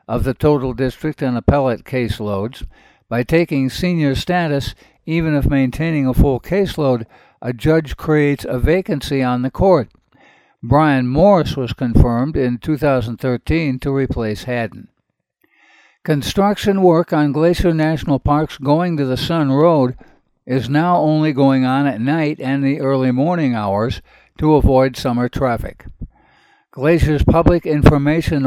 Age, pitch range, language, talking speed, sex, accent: 60-79, 130-155 Hz, English, 135 wpm, male, American